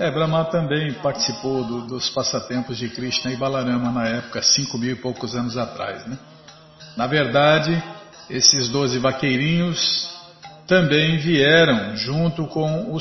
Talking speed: 135 wpm